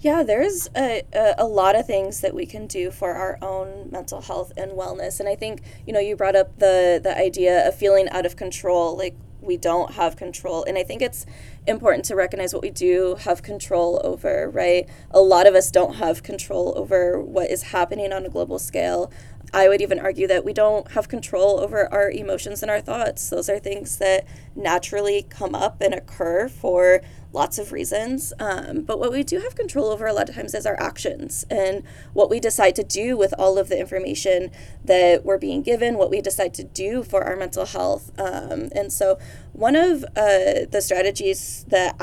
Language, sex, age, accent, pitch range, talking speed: English, female, 20-39, American, 185-210 Hz, 205 wpm